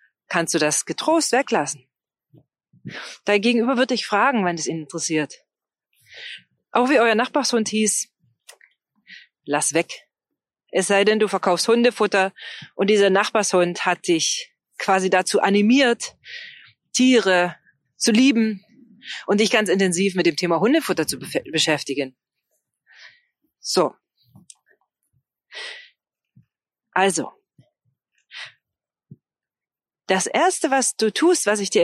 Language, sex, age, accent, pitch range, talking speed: German, female, 40-59, German, 175-255 Hz, 110 wpm